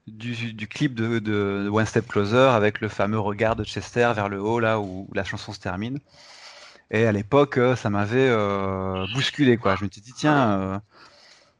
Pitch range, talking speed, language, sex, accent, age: 100-130 Hz, 190 wpm, French, male, French, 30-49